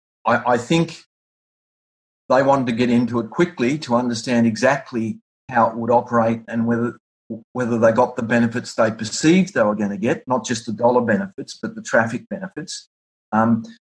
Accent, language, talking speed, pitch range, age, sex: Australian, English, 175 wpm, 110-130 Hz, 40-59, male